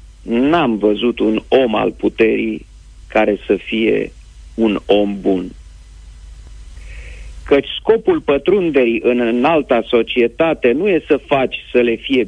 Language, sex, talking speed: Romanian, male, 120 wpm